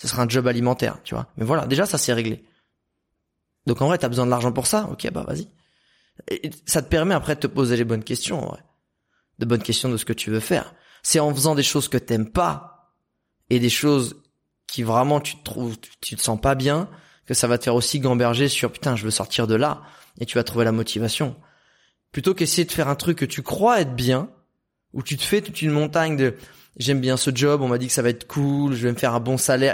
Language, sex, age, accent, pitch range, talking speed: French, male, 20-39, French, 125-155 Hz, 260 wpm